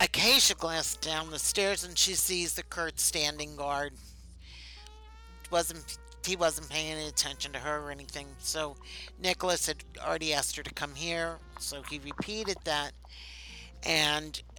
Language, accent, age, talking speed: English, American, 60-79, 150 wpm